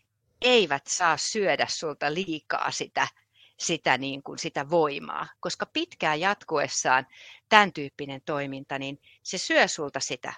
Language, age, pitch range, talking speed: Finnish, 30-49, 145-210 Hz, 125 wpm